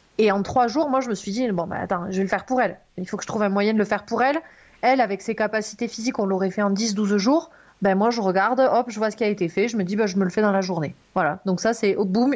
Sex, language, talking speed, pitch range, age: female, French, 340 wpm, 205-265 Hz, 30-49